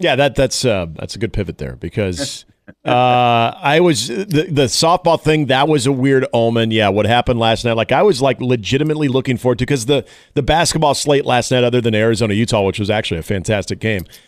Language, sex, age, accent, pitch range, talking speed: English, male, 40-59, American, 110-135 Hz, 220 wpm